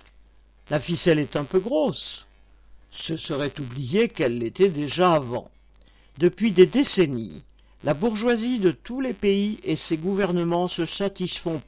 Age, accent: 50-69, French